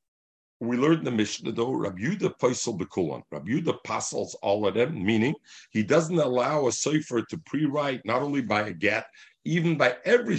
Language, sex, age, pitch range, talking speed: English, male, 50-69, 135-175 Hz, 185 wpm